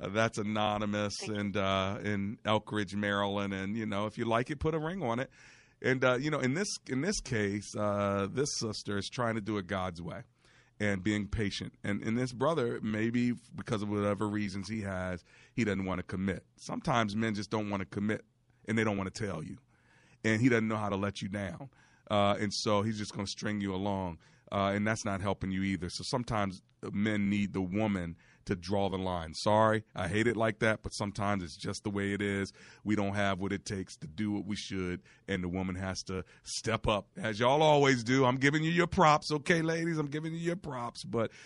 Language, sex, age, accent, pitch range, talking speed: English, male, 40-59, American, 100-125 Hz, 225 wpm